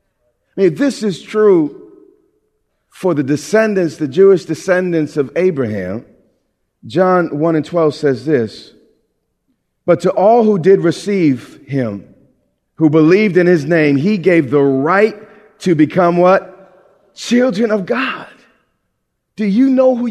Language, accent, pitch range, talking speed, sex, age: English, American, 140-200 Hz, 130 wpm, male, 40-59